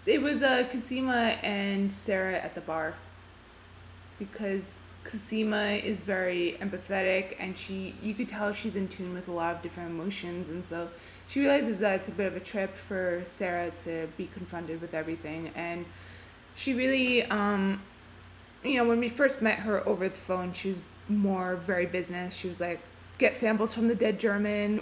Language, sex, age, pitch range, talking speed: English, female, 20-39, 175-215 Hz, 180 wpm